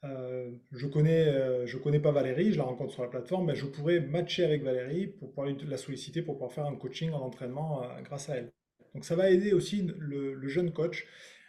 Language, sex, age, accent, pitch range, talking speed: French, male, 20-39, French, 135-165 Hz, 230 wpm